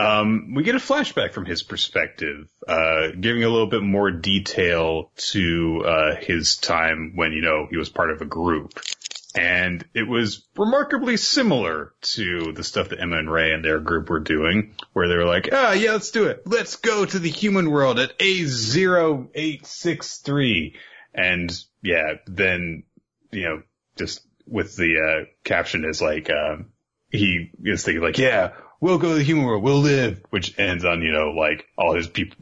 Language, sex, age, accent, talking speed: English, male, 30-49, American, 190 wpm